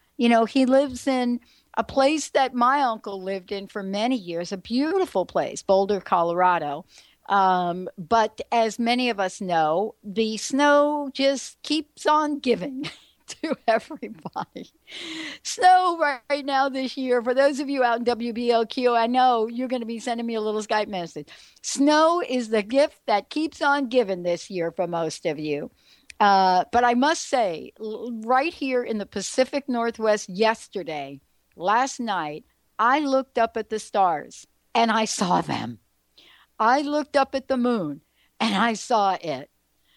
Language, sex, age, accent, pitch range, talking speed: English, female, 60-79, American, 205-270 Hz, 160 wpm